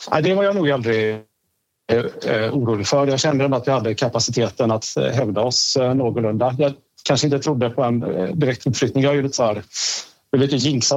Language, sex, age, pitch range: Swedish, male, 30-49, 115-140 Hz